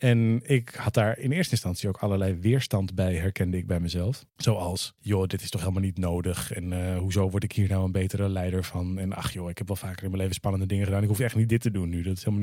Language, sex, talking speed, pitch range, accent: Dutch, male, 280 wpm, 100-120 Hz, Dutch